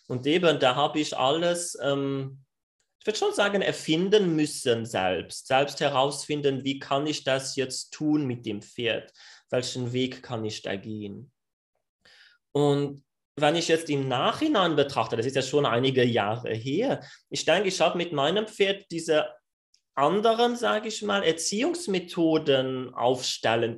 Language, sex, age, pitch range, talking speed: German, male, 30-49, 130-175 Hz, 150 wpm